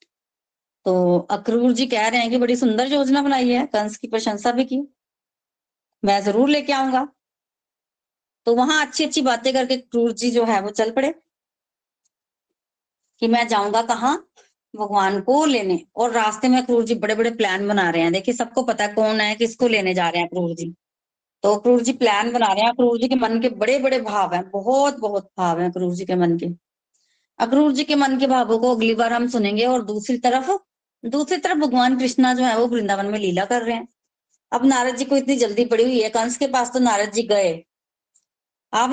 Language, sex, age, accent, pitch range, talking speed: Hindi, female, 20-39, native, 210-260 Hz, 205 wpm